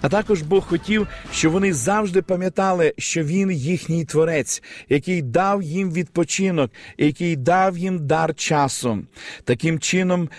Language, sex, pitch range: Ukrainian, male, 150-190 Hz